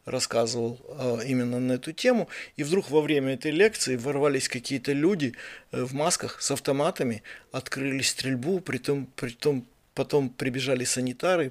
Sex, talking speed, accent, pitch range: male, 120 wpm, native, 125-145 Hz